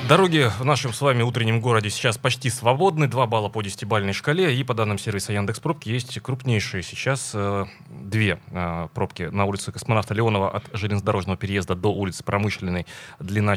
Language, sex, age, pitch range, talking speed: Russian, male, 30-49, 100-130 Hz, 170 wpm